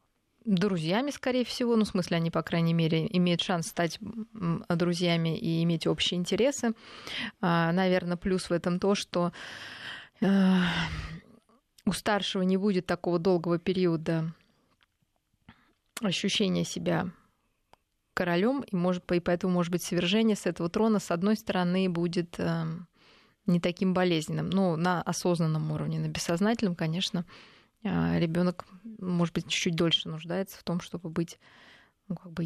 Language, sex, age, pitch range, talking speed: Russian, female, 20-39, 170-200 Hz, 130 wpm